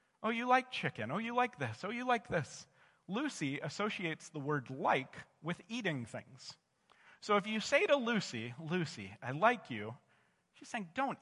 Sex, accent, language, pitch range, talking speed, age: male, American, English, 145-215 Hz, 175 wpm, 40-59